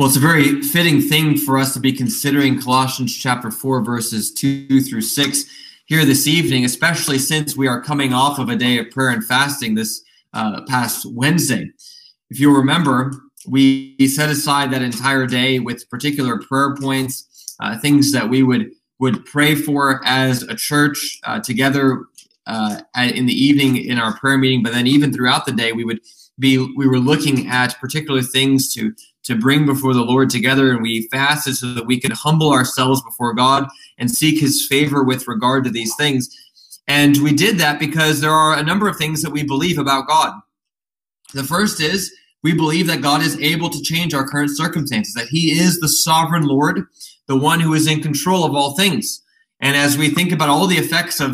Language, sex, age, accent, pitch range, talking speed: English, male, 20-39, American, 130-150 Hz, 195 wpm